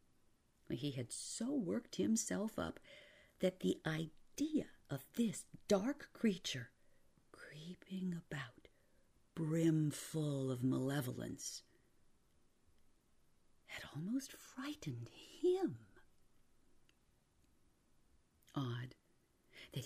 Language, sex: English, female